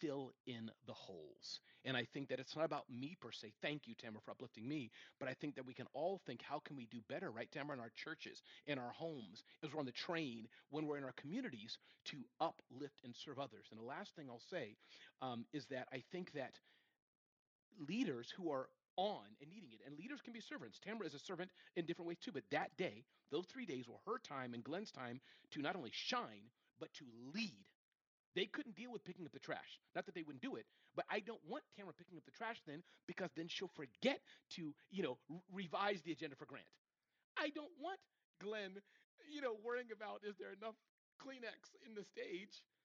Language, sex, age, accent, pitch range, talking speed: English, male, 40-59, American, 145-230 Hz, 220 wpm